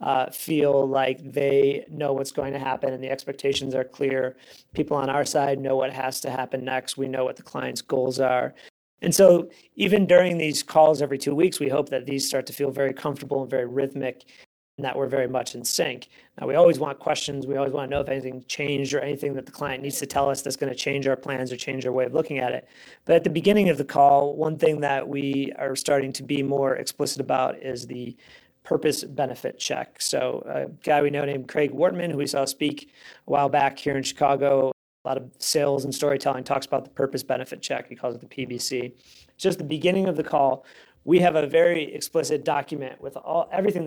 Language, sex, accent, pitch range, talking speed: English, male, American, 135-150 Hz, 230 wpm